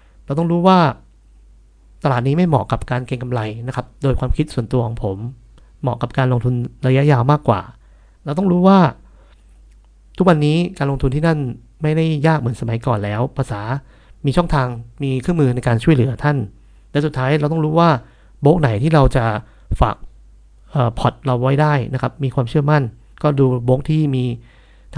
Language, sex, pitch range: Thai, male, 120-150 Hz